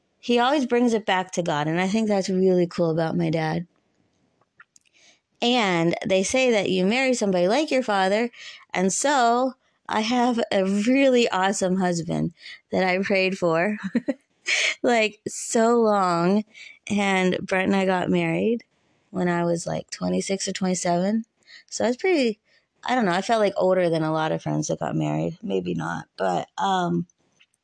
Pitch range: 175-210 Hz